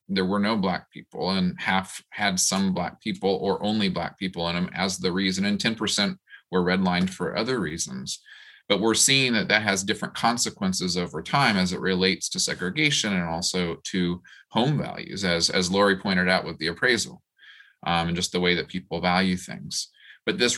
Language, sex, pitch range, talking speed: English, male, 90-115 Hz, 190 wpm